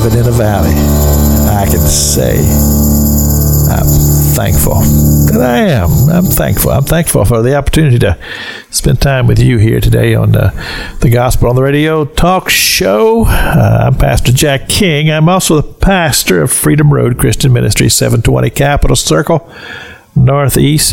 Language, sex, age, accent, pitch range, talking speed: English, male, 50-69, American, 105-140 Hz, 150 wpm